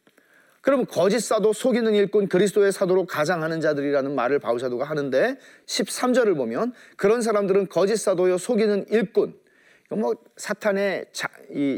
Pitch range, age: 160-225 Hz, 40-59